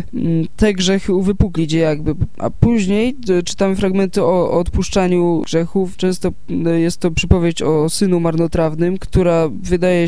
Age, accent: 20-39, native